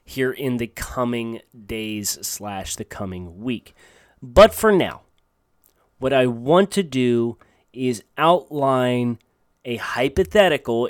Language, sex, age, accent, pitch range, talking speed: English, male, 30-49, American, 115-155 Hz, 115 wpm